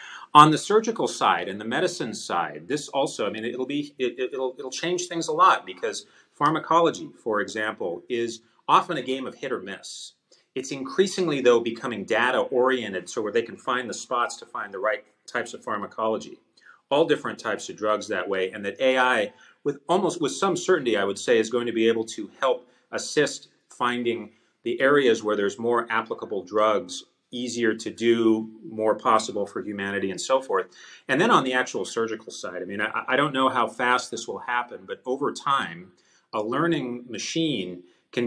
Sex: male